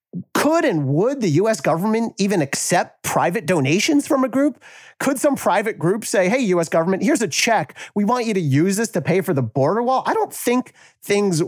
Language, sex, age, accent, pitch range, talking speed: English, male, 40-59, American, 155-220 Hz, 210 wpm